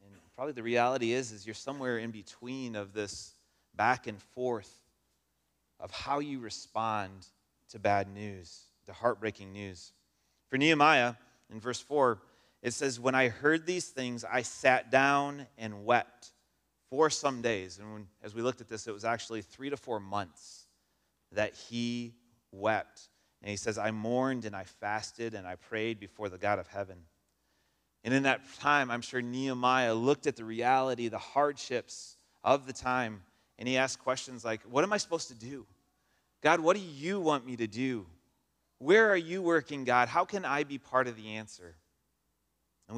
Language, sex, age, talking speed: English, male, 30-49, 175 wpm